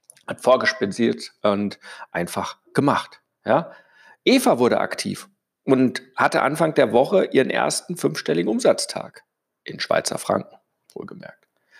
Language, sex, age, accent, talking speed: German, male, 50-69, German, 110 wpm